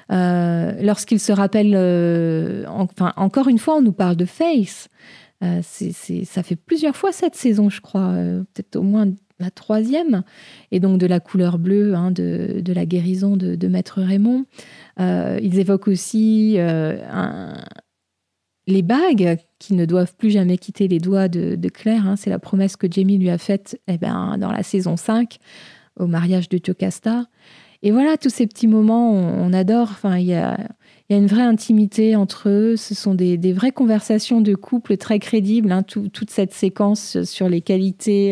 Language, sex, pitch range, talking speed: French, female, 180-215 Hz, 190 wpm